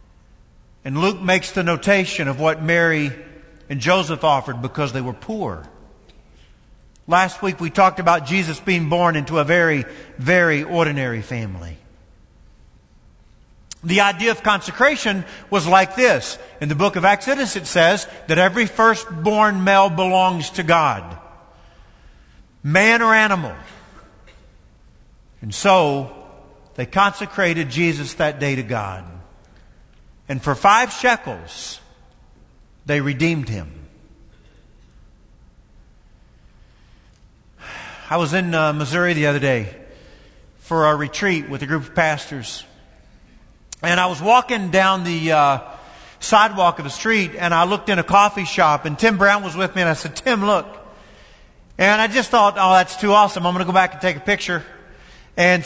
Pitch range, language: 140-195 Hz, English